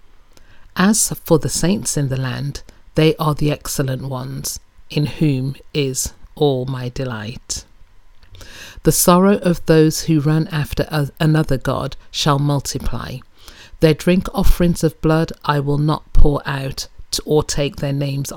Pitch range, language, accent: 130-160 Hz, English, British